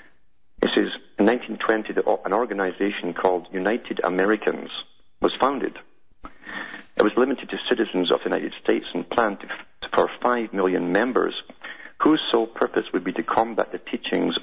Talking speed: 145 wpm